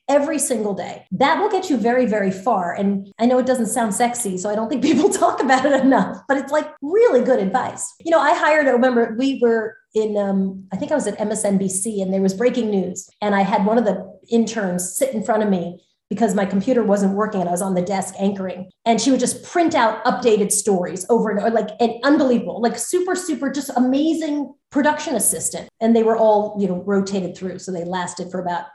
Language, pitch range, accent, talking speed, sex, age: English, 200-295 Hz, American, 230 wpm, female, 30-49